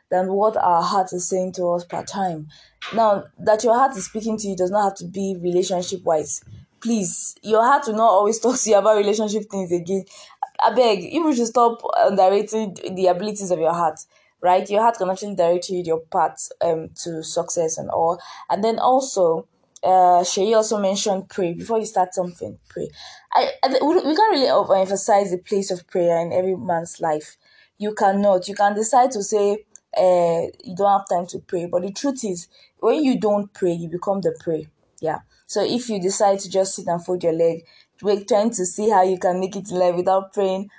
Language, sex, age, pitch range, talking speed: English, female, 20-39, 180-220 Hz, 205 wpm